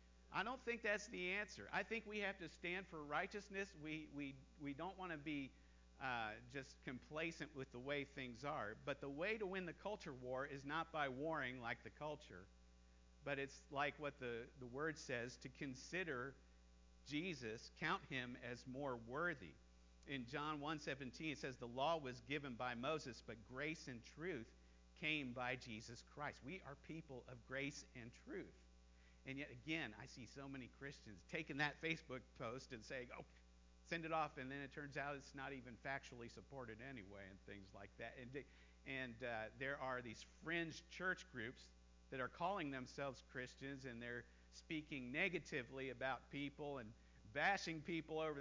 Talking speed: 175 wpm